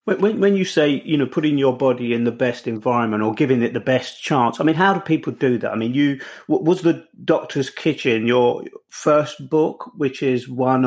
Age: 40-59